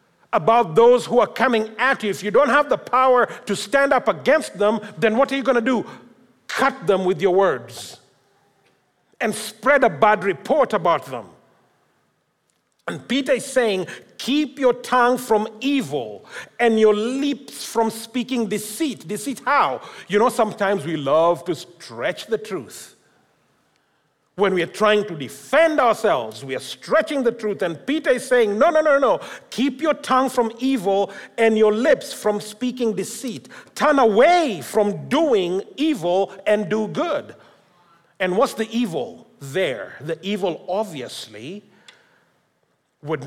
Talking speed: 155 wpm